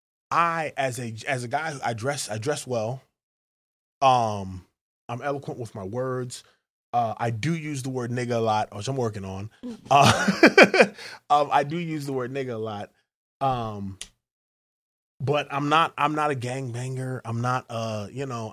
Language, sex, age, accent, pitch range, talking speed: English, male, 20-39, American, 110-135 Hz, 170 wpm